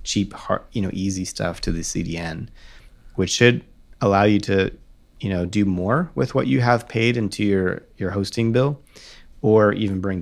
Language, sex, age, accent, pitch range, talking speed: English, male, 30-49, American, 90-110 Hz, 180 wpm